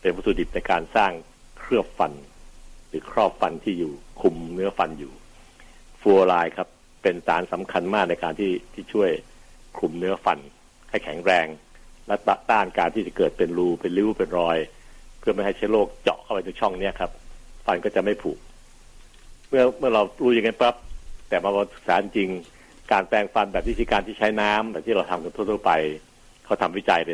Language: Thai